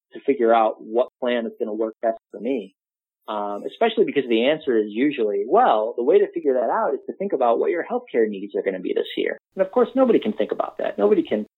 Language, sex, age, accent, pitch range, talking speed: English, male, 30-49, American, 110-160 Hz, 260 wpm